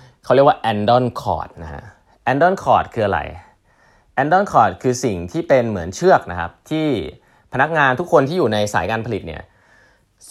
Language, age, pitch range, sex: Thai, 20-39, 100-140 Hz, male